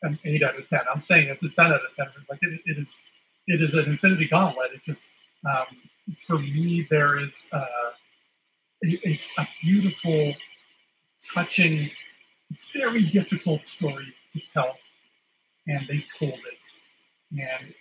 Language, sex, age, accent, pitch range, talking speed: English, male, 40-59, American, 140-170 Hz, 150 wpm